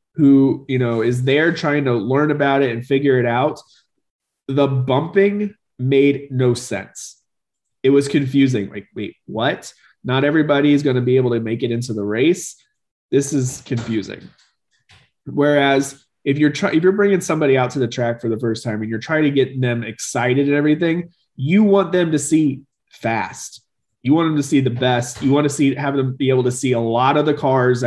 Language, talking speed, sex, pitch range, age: English, 200 wpm, male, 125-150 Hz, 30-49